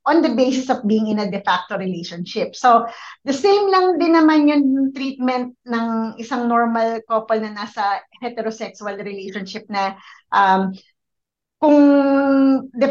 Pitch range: 210-265 Hz